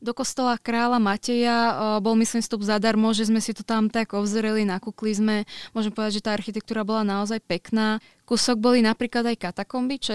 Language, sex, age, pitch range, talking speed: Slovak, female, 20-39, 200-215 Hz, 185 wpm